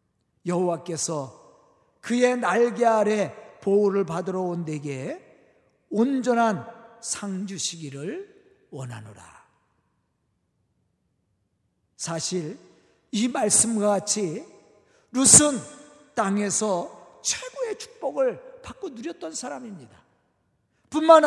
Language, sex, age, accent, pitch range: Korean, male, 50-69, native, 180-280 Hz